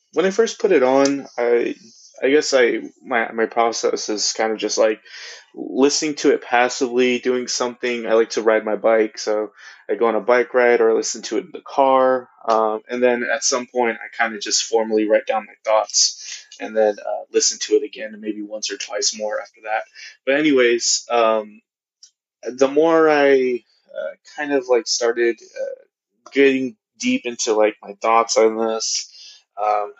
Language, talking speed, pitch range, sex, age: English, 190 wpm, 110-135 Hz, male, 20-39